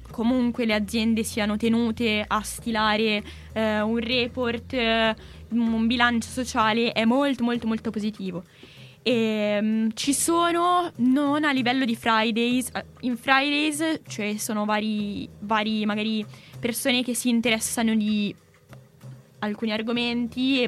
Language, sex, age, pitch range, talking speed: Italian, female, 10-29, 210-240 Hz, 130 wpm